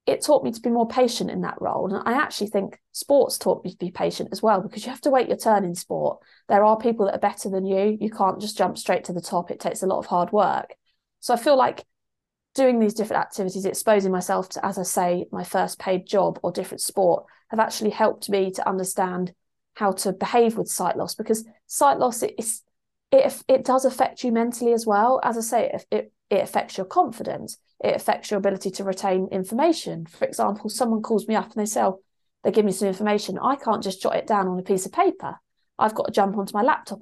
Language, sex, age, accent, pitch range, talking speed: English, female, 20-39, British, 195-240 Hz, 240 wpm